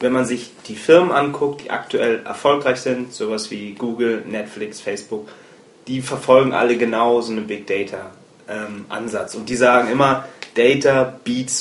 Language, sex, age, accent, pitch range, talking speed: German, male, 30-49, German, 120-140 Hz, 150 wpm